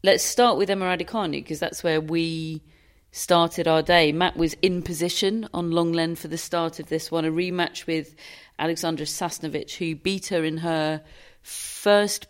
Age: 40-59